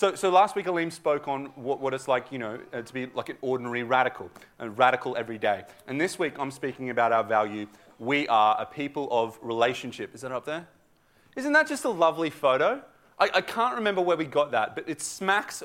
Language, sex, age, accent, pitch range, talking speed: English, male, 30-49, Australian, 130-180 Hz, 225 wpm